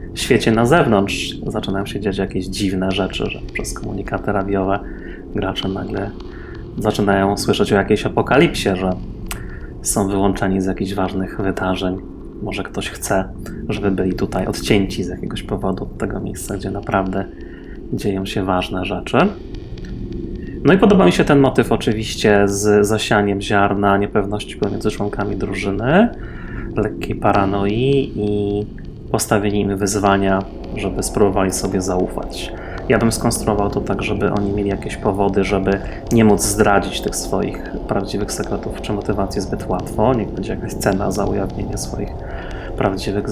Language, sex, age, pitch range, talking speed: Polish, male, 30-49, 95-105 Hz, 140 wpm